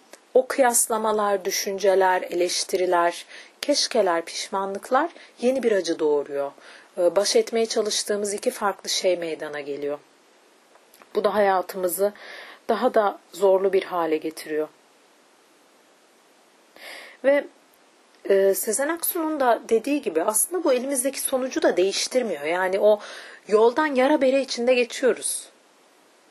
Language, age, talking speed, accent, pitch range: Turkish, 40-59, 105 wpm, native, 185-245 Hz